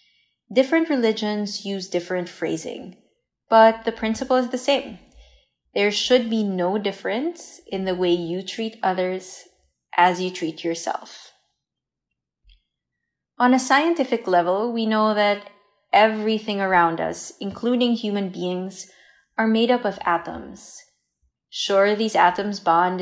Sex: female